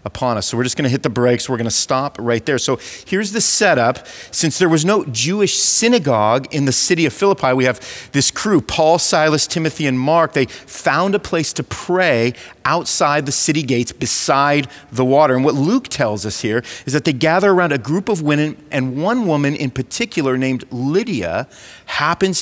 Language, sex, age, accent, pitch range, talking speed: English, male, 40-59, American, 130-165 Hz, 205 wpm